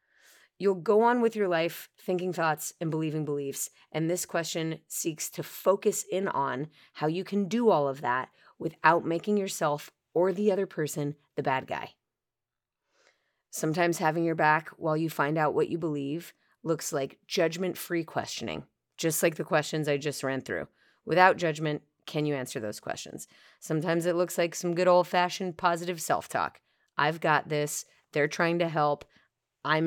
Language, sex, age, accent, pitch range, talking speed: English, female, 30-49, American, 145-175 Hz, 165 wpm